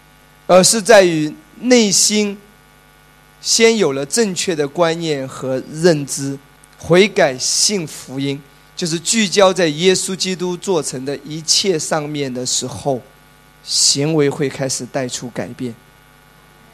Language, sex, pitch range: Chinese, male, 145-200 Hz